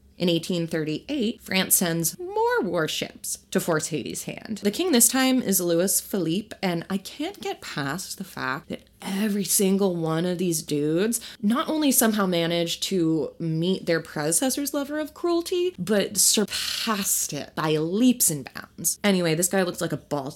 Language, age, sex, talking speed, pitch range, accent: English, 20-39, female, 165 wpm, 155-215 Hz, American